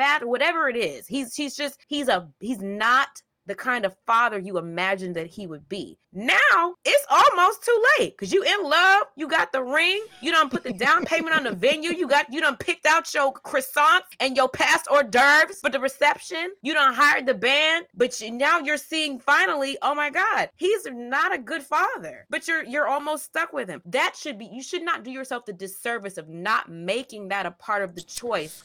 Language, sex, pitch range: English, female, 190-290 Hz